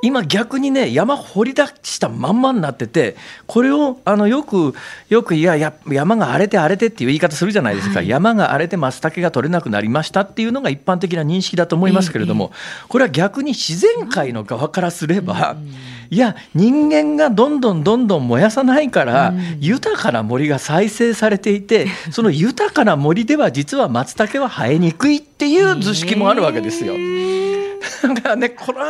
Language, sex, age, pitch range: Japanese, male, 40-59, 155-235 Hz